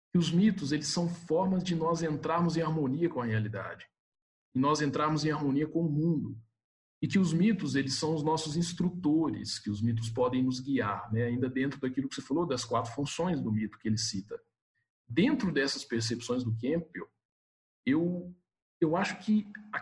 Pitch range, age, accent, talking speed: 115-165 Hz, 50-69, Brazilian, 185 wpm